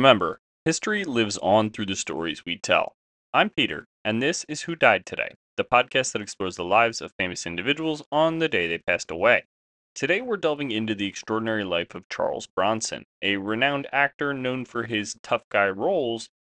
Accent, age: American, 30-49